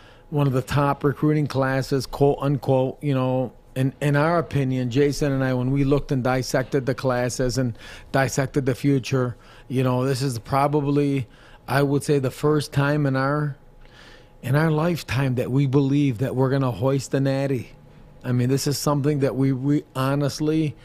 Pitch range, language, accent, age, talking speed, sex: 125-140 Hz, English, American, 40-59, 180 wpm, male